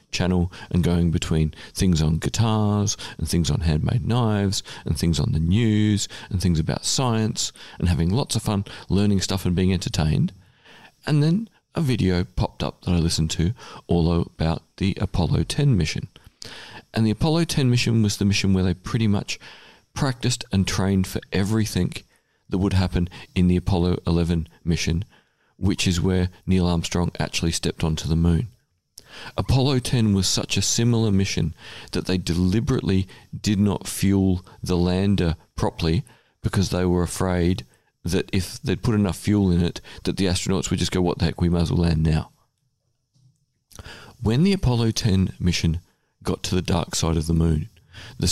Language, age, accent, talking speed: English, 40-59, Australian, 175 wpm